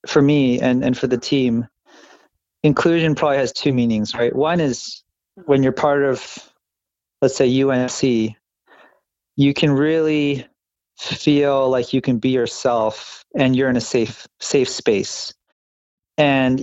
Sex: male